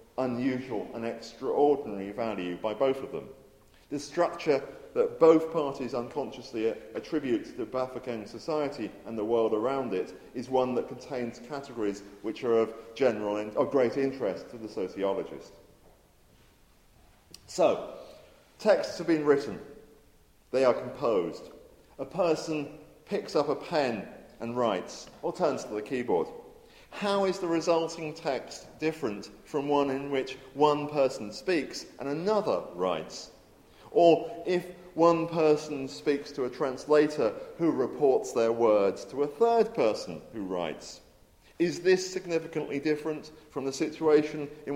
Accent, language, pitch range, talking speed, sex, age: British, English, 120-160 Hz, 140 wpm, male, 40-59